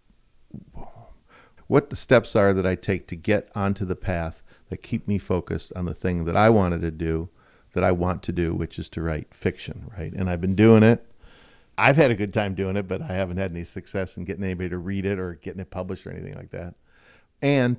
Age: 50-69